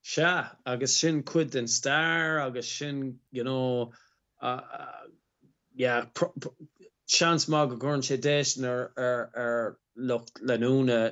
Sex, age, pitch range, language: male, 20-39, 115-135 Hz, English